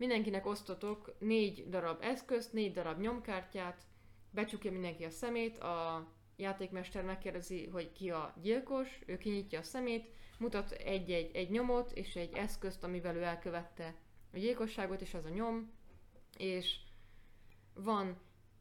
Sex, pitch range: female, 165-210 Hz